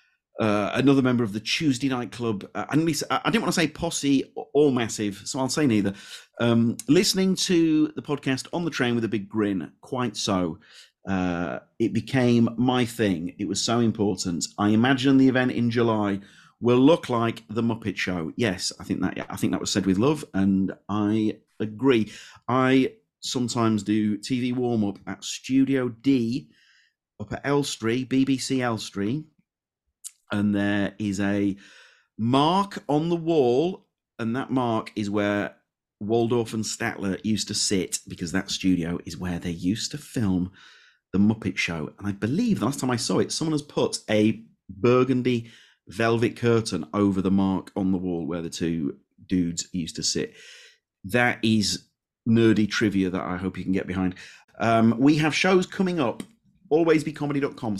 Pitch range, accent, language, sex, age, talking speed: 100-135 Hz, British, English, male, 40-59, 170 wpm